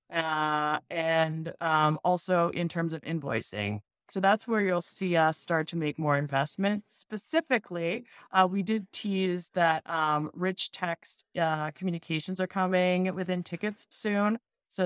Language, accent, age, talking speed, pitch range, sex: English, American, 20-39, 145 wpm, 160-200 Hz, female